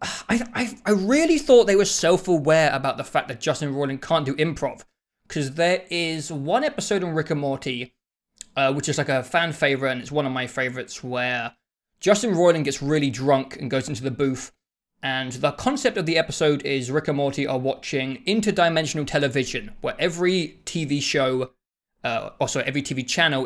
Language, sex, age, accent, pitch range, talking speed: English, male, 20-39, British, 135-185 Hz, 190 wpm